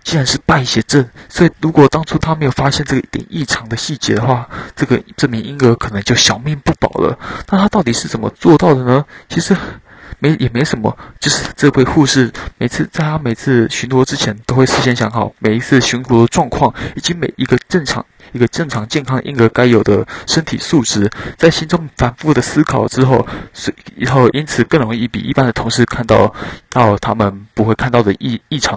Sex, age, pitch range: male, 20-39, 115-150 Hz